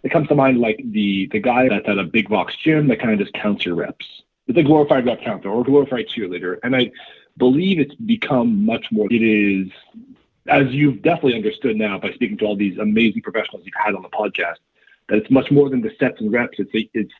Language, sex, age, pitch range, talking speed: English, male, 40-59, 110-140 Hz, 235 wpm